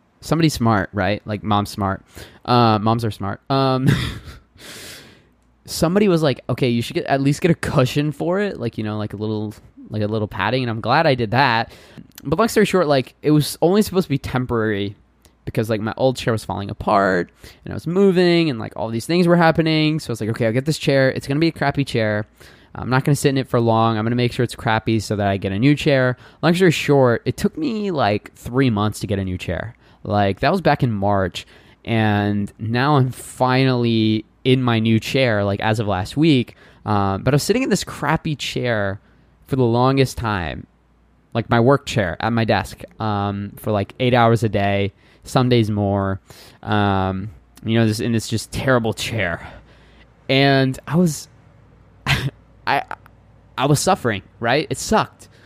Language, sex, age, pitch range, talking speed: English, male, 20-39, 105-140 Hz, 210 wpm